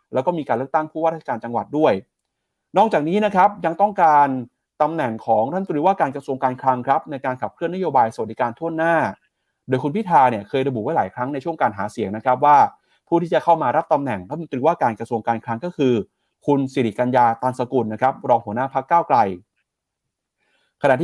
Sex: male